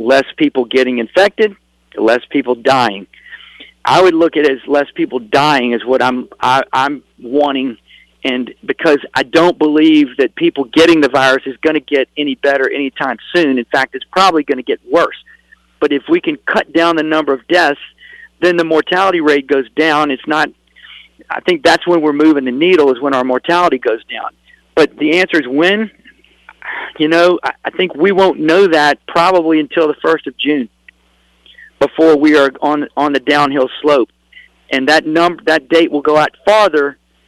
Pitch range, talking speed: 140-180 Hz, 185 wpm